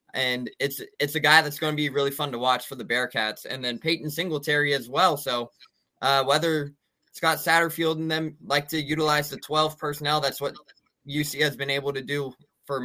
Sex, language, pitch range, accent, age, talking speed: male, English, 135-160 Hz, American, 20-39, 205 wpm